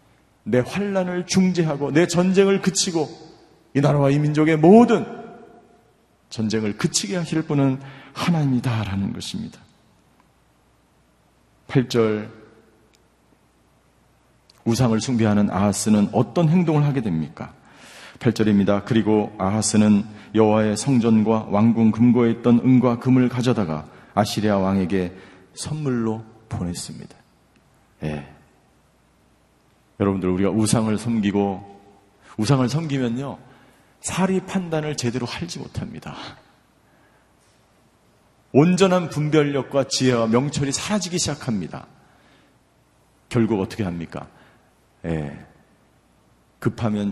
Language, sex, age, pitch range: Korean, male, 40-59, 100-140 Hz